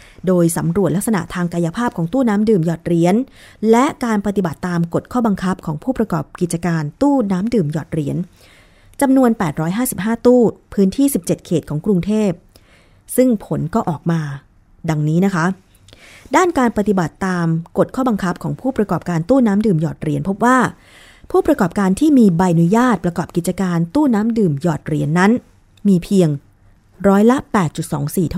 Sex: female